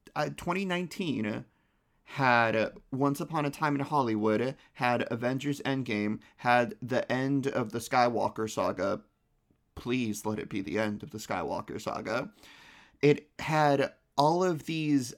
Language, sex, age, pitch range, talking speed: English, male, 30-49, 120-150 Hz, 135 wpm